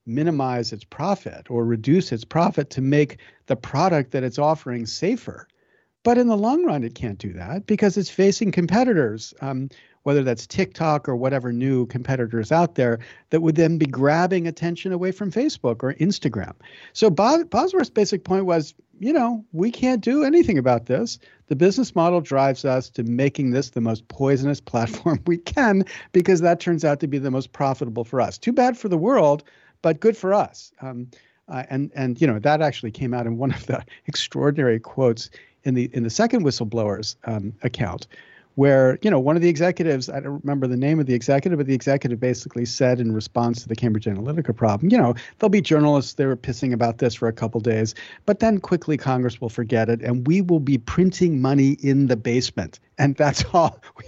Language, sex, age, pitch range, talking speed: English, male, 50-69, 125-185 Hz, 200 wpm